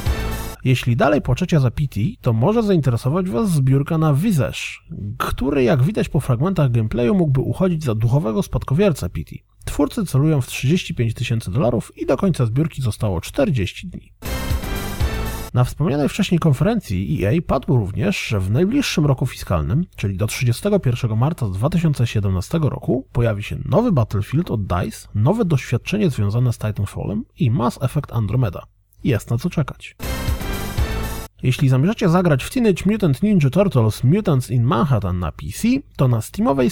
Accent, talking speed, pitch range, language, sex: native, 145 wpm, 110-165 Hz, Polish, male